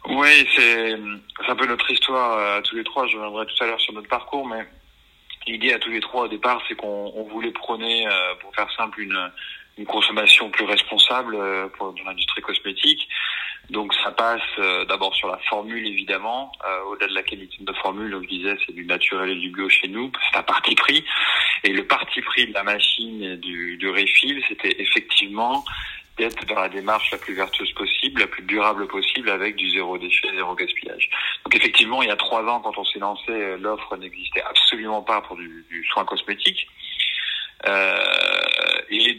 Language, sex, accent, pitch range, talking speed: French, male, French, 95-115 Hz, 200 wpm